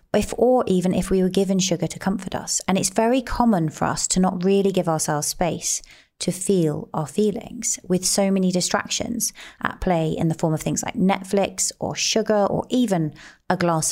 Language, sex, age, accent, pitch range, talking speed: English, female, 30-49, British, 165-200 Hz, 200 wpm